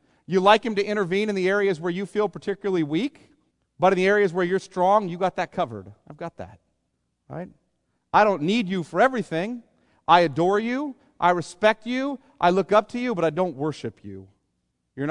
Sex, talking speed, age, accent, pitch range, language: male, 205 wpm, 40-59, American, 120-195 Hz, English